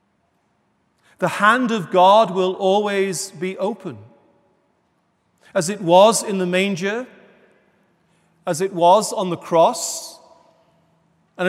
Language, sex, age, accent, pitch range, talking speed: English, male, 40-59, British, 145-195 Hz, 110 wpm